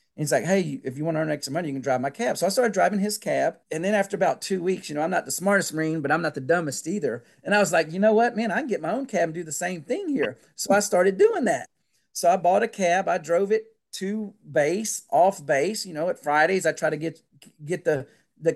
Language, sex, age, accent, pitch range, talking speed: English, male, 40-59, American, 150-200 Hz, 290 wpm